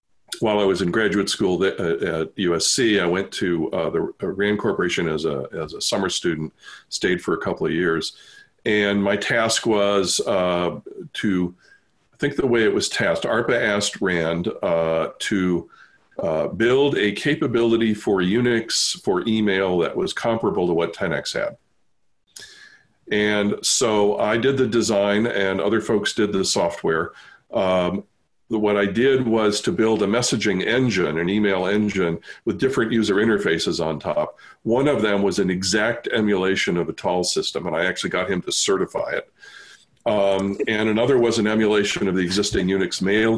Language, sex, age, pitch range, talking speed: English, male, 50-69, 90-110 Hz, 165 wpm